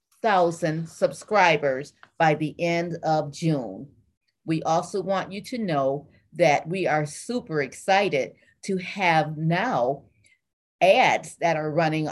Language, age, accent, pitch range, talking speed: English, 40-59, American, 150-190 Hz, 125 wpm